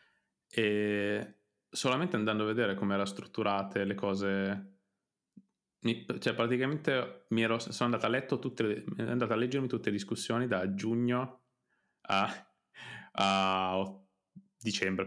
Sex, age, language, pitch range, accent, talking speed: male, 20-39, Italian, 100-120 Hz, native, 125 wpm